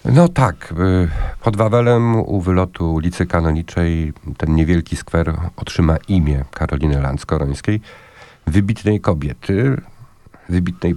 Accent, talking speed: native, 100 wpm